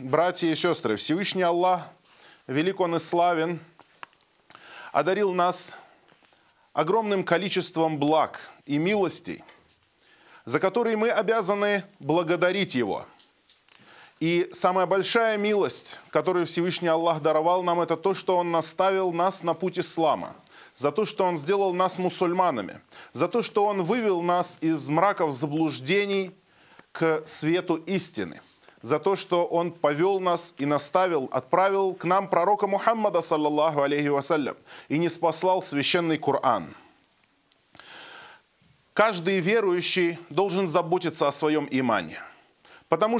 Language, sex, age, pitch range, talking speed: Russian, male, 20-39, 160-195 Hz, 120 wpm